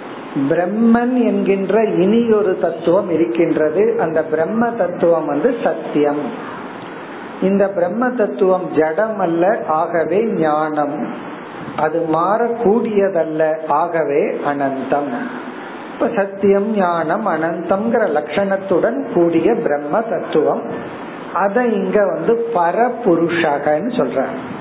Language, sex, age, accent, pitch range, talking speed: Tamil, male, 50-69, native, 165-220 Hz, 85 wpm